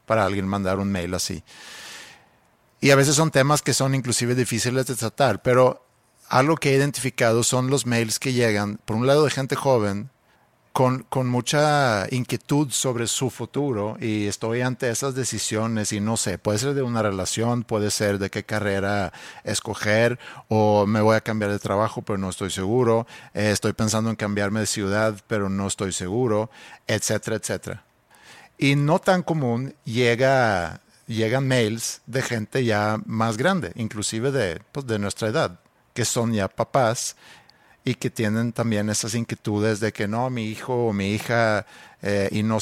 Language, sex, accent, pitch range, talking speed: Spanish, male, Mexican, 105-130 Hz, 170 wpm